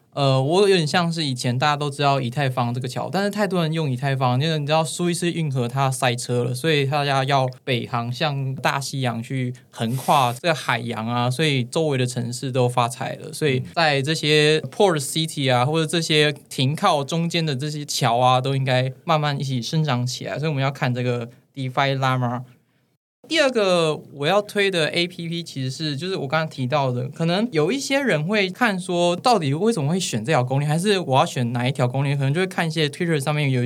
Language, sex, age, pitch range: Chinese, male, 20-39, 130-170 Hz